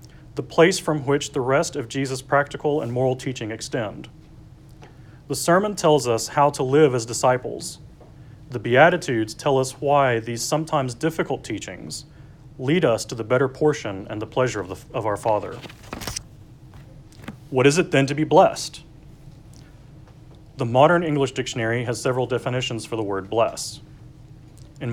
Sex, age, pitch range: male, 30-49, 120-145 Hz